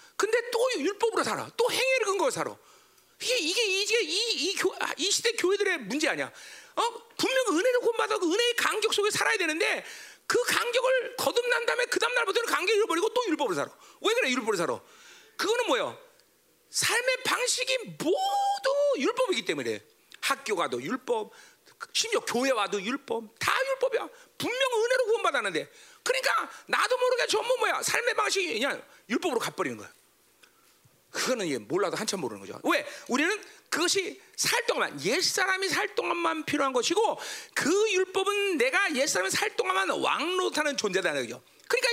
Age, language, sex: 40-59, Korean, male